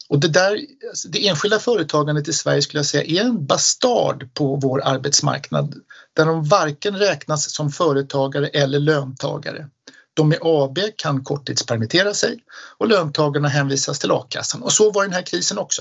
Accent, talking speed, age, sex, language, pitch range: native, 160 wpm, 60-79, male, Swedish, 140-180 Hz